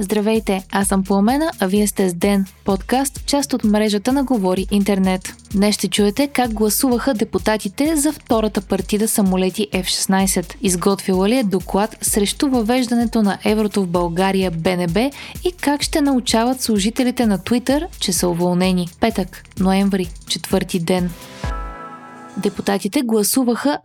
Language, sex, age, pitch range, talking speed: Bulgarian, female, 20-39, 195-245 Hz, 135 wpm